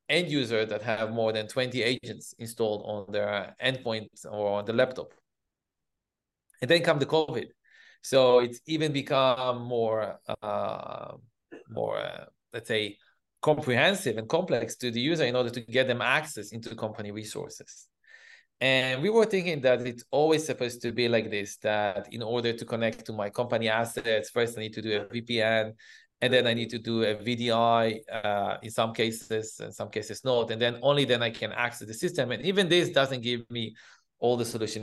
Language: English